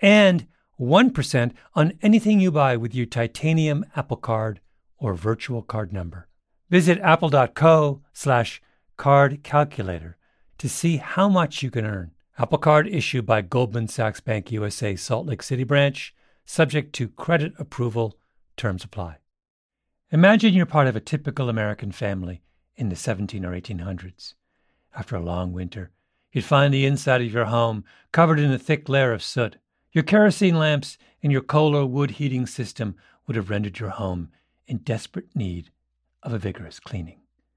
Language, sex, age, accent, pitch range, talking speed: English, male, 50-69, American, 100-155 Hz, 155 wpm